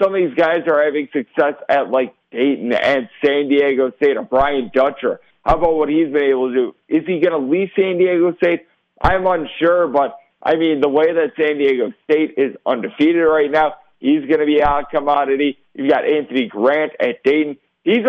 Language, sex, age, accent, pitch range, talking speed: English, male, 50-69, American, 140-160 Hz, 200 wpm